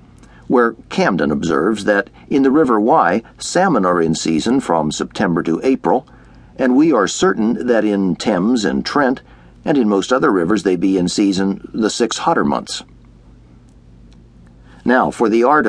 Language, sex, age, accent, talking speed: English, male, 60-79, American, 160 wpm